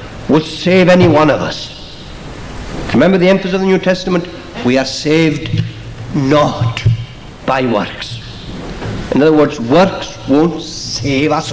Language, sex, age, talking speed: English, male, 60-79, 135 wpm